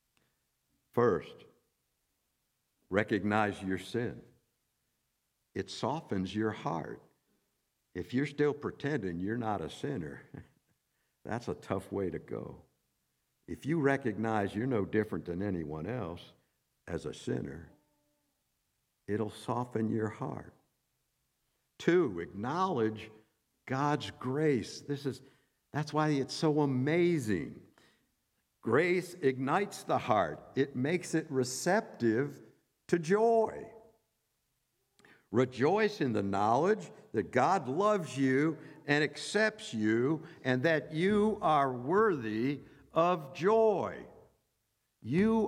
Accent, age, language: American, 60-79, English